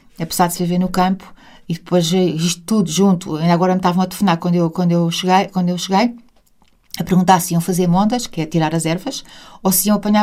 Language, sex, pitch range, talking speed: Portuguese, female, 170-200 Hz, 240 wpm